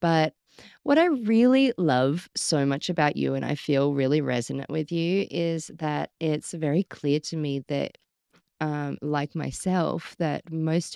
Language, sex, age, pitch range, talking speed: English, female, 20-39, 140-175 Hz, 160 wpm